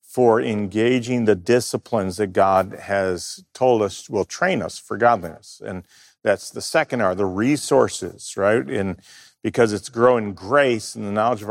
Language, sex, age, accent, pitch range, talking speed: English, male, 50-69, American, 110-135 Hz, 160 wpm